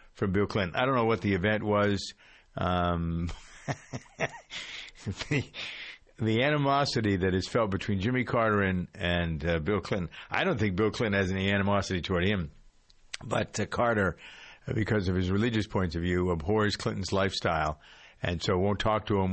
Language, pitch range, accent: English, 95-115 Hz, American